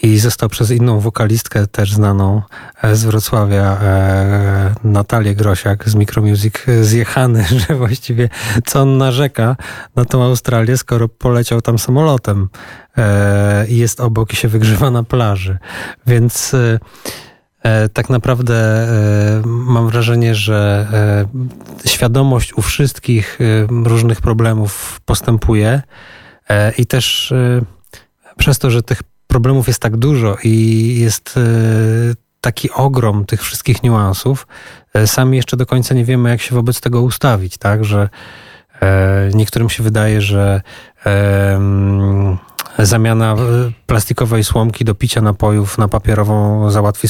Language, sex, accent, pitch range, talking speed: Polish, male, native, 105-120 Hz, 125 wpm